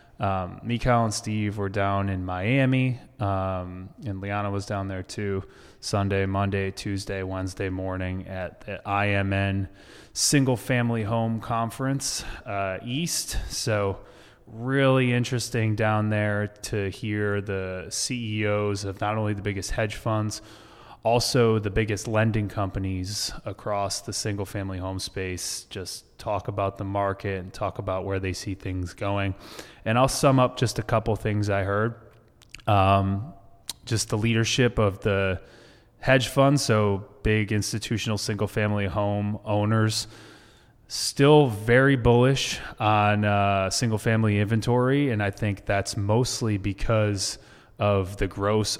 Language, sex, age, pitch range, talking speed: English, male, 20-39, 100-115 Hz, 135 wpm